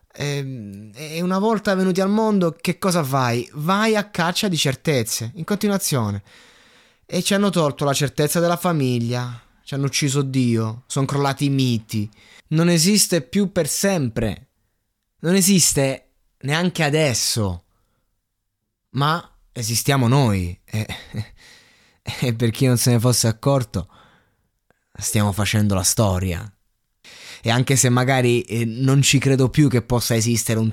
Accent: native